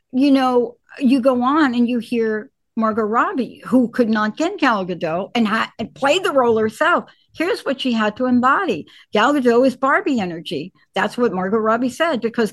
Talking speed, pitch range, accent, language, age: 185 wpm, 210-270 Hz, American, English, 60-79